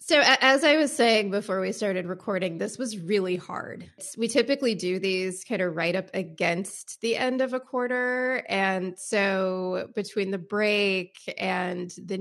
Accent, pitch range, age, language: American, 175-210 Hz, 20-39, English